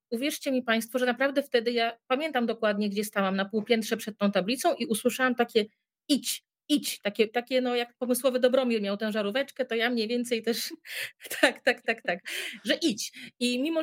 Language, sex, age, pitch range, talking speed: Polish, female, 30-49, 200-250 Hz, 185 wpm